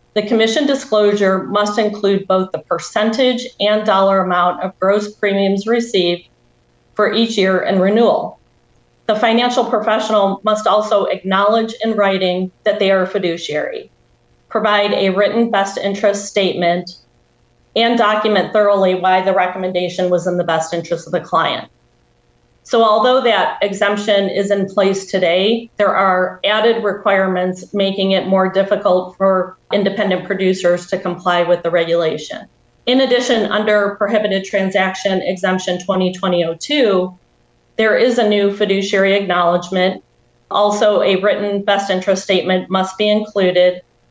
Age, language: 40-59, English